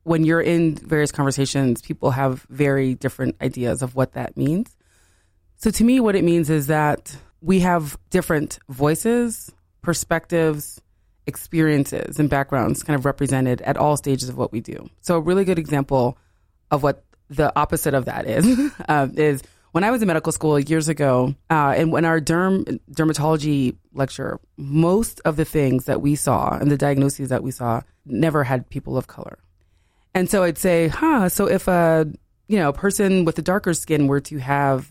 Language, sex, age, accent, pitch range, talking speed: English, female, 20-39, American, 135-170 Hz, 180 wpm